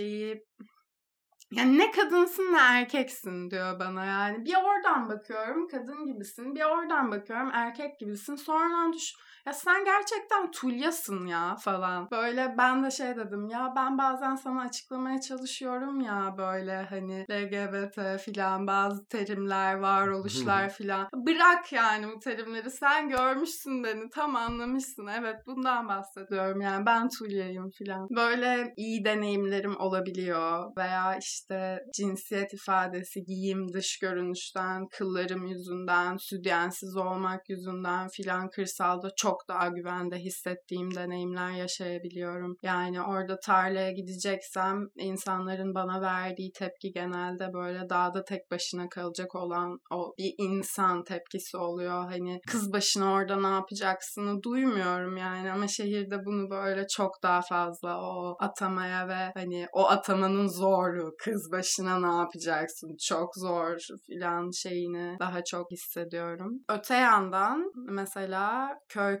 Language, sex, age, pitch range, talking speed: Turkish, female, 20-39, 185-230 Hz, 125 wpm